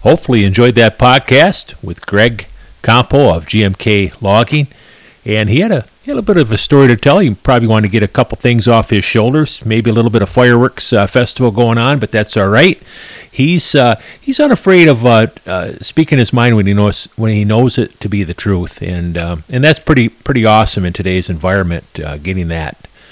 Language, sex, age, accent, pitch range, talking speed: English, male, 50-69, American, 90-115 Hz, 215 wpm